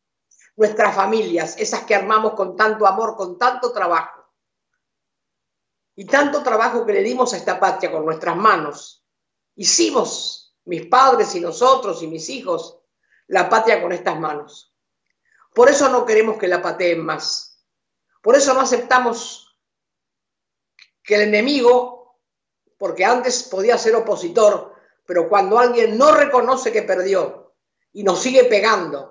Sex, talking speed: female, 140 wpm